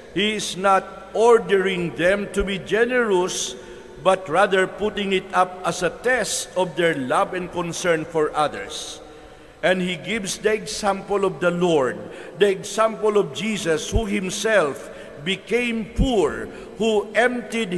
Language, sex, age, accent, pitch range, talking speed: English, male, 50-69, Filipino, 175-205 Hz, 140 wpm